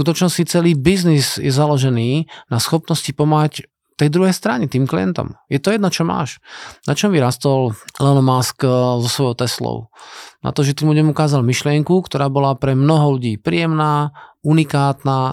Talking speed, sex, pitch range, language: 155 wpm, male, 135-165 Hz, Slovak